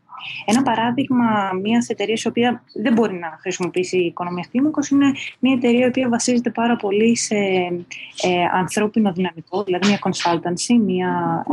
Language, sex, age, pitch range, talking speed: Greek, female, 20-39, 180-230 Hz, 140 wpm